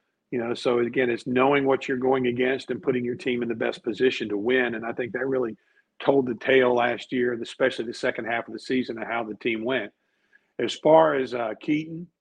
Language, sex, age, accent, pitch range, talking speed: English, male, 50-69, American, 125-145 Hz, 230 wpm